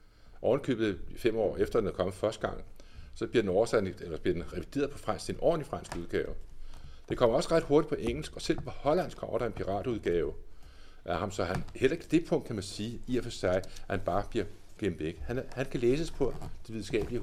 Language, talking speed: Danish, 235 wpm